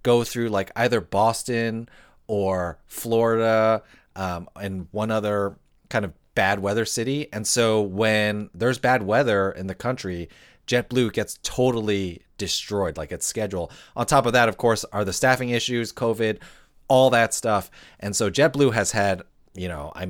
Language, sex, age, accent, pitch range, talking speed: English, male, 30-49, American, 90-115 Hz, 160 wpm